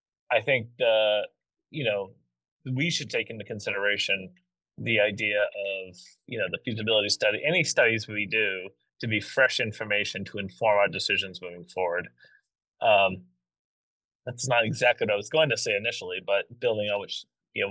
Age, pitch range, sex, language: 30-49, 100-125 Hz, male, English